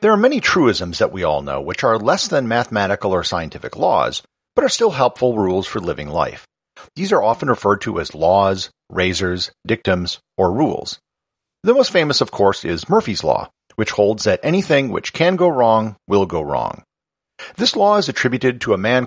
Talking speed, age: 190 wpm, 50-69